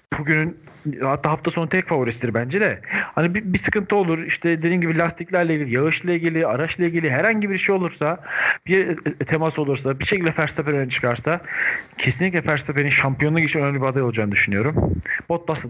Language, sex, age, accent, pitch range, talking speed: Turkish, male, 40-59, native, 135-165 Hz, 170 wpm